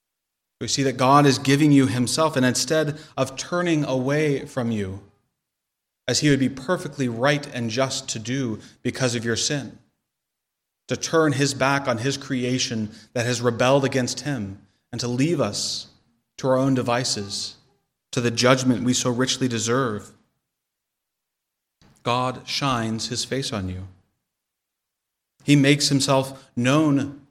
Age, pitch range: 30-49, 120-140 Hz